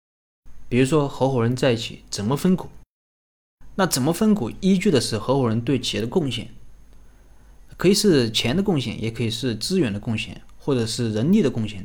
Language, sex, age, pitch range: Chinese, male, 20-39, 105-145 Hz